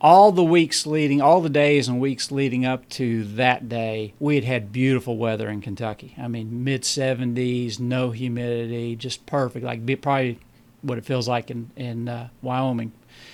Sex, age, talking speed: male, 40-59, 170 wpm